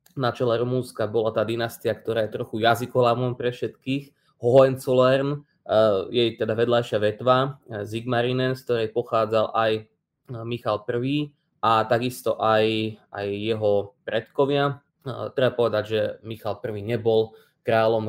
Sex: male